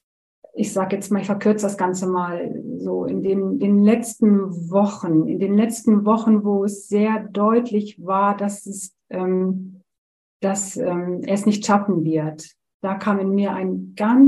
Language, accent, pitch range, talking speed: German, German, 185-220 Hz, 170 wpm